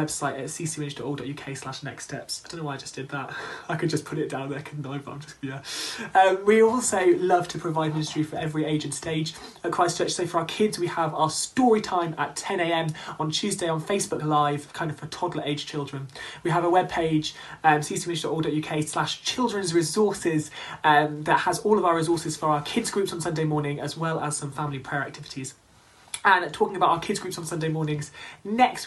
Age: 20-39